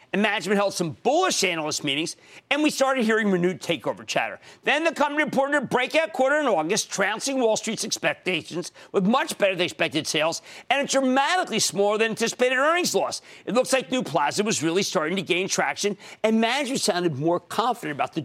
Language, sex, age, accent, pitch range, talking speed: English, male, 50-69, American, 170-245 Hz, 180 wpm